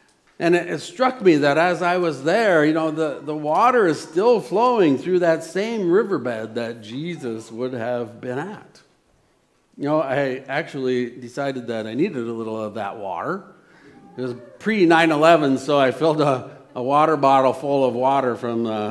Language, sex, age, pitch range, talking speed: English, male, 50-69, 135-195 Hz, 180 wpm